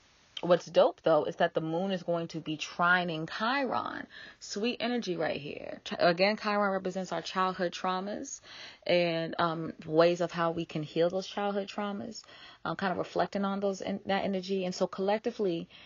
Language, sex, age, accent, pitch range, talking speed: English, female, 30-49, American, 155-185 Hz, 180 wpm